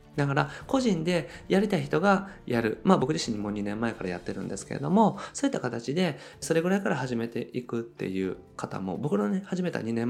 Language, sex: Japanese, male